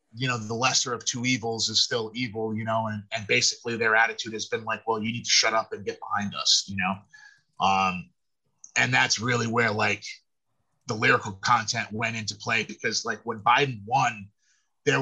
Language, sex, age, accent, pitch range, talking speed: English, male, 30-49, American, 110-145 Hz, 200 wpm